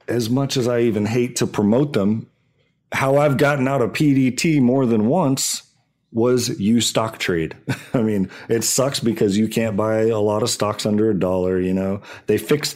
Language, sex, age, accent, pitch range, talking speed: English, male, 30-49, American, 100-125 Hz, 195 wpm